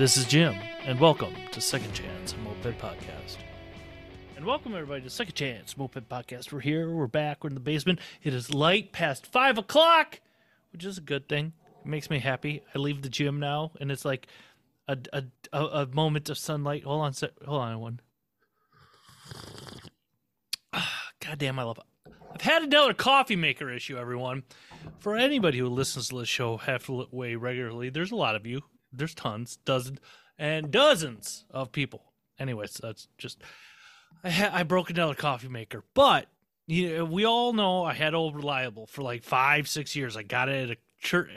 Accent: American